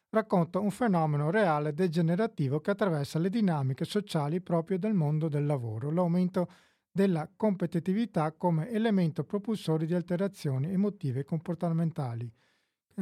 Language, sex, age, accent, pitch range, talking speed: Italian, male, 50-69, native, 150-185 Hz, 125 wpm